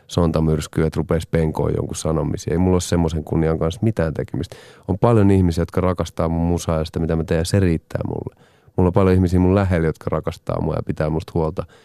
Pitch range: 85-115 Hz